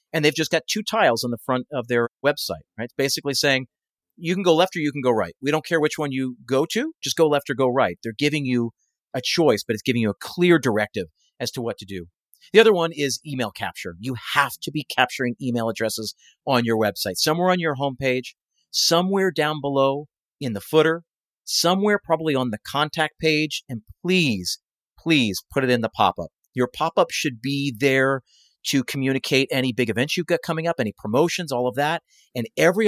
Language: English